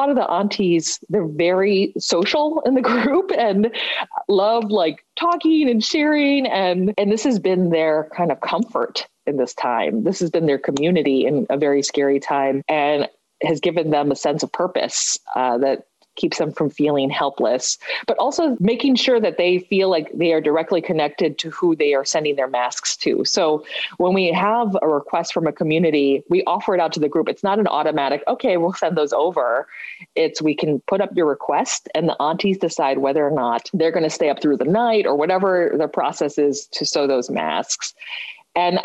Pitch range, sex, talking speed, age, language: 150-200 Hz, female, 200 wpm, 30-49, English